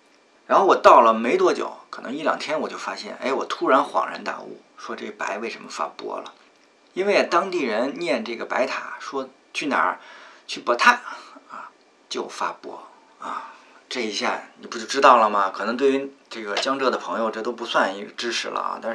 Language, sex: Chinese, male